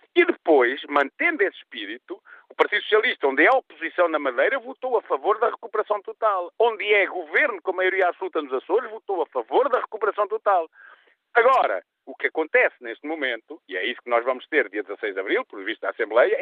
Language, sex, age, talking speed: Portuguese, male, 50-69, 205 wpm